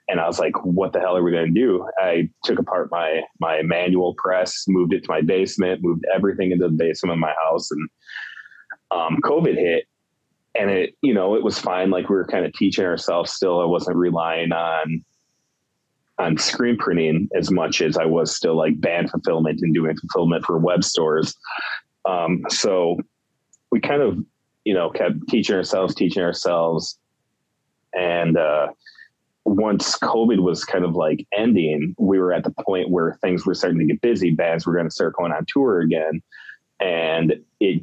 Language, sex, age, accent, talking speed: English, male, 30-49, American, 185 wpm